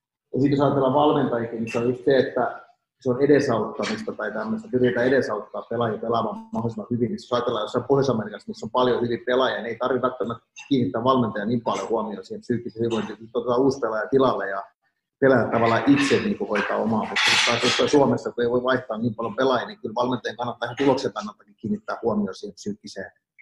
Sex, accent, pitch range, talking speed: male, native, 120-145 Hz, 185 wpm